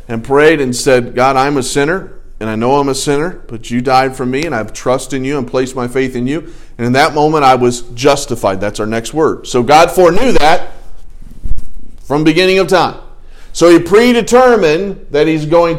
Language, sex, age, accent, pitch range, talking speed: English, male, 40-59, American, 120-160 Hz, 215 wpm